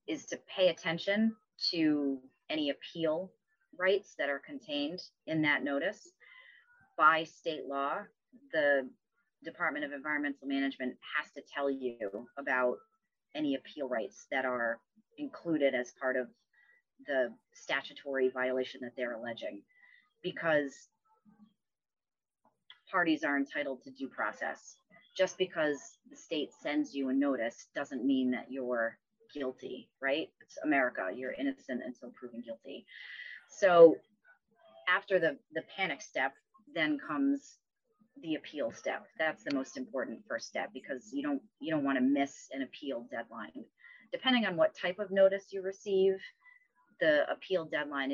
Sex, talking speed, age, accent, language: female, 135 wpm, 30-49, American, English